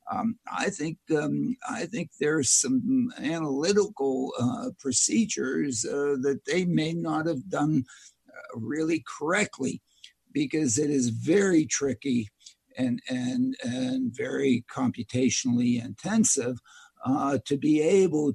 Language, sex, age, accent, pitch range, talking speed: English, male, 60-79, American, 130-190 Hz, 120 wpm